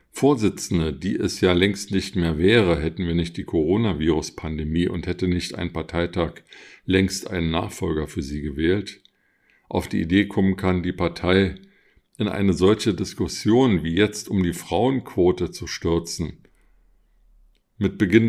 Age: 50-69